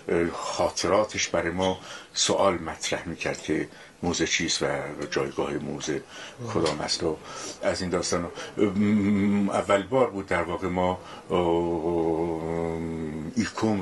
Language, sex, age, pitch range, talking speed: Persian, male, 60-79, 80-95 Hz, 110 wpm